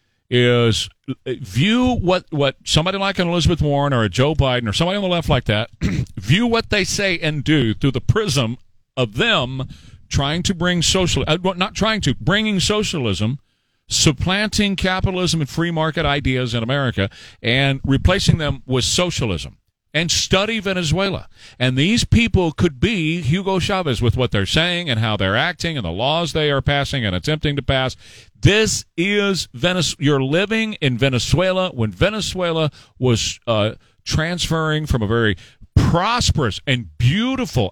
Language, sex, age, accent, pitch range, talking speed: English, male, 50-69, American, 120-180 Hz, 160 wpm